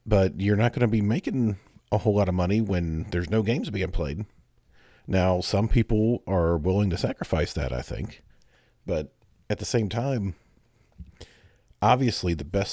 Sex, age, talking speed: male, 40-59, 170 wpm